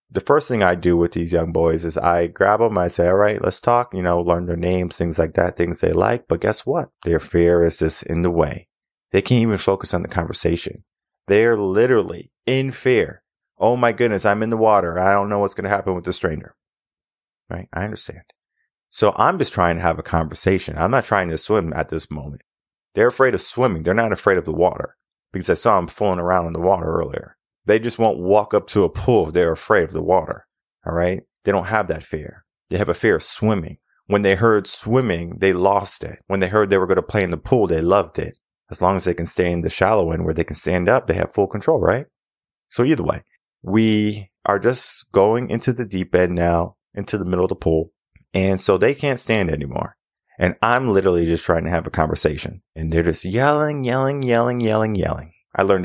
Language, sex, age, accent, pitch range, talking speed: English, male, 30-49, American, 85-105 Hz, 235 wpm